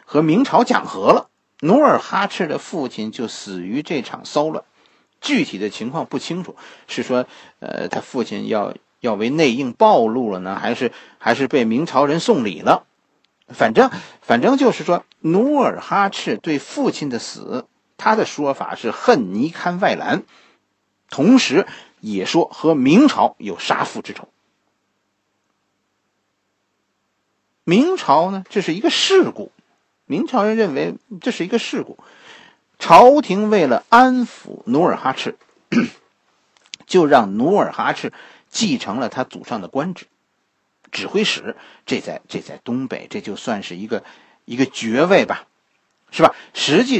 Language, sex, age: Chinese, male, 50-69